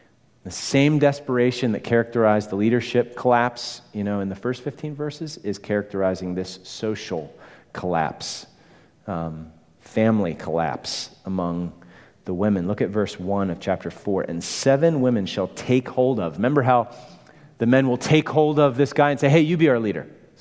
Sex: male